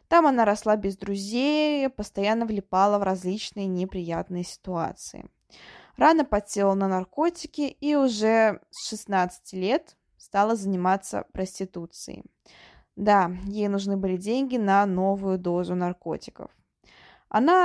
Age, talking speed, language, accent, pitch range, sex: 20-39, 110 wpm, Russian, native, 185-235 Hz, female